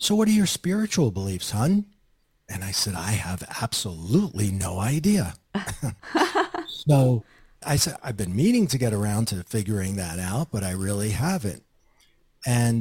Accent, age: American, 40-59